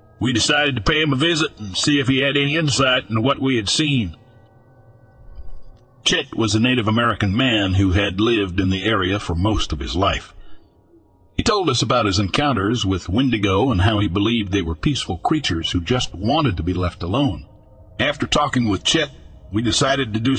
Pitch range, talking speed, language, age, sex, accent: 95-130 Hz, 195 wpm, English, 60-79, male, American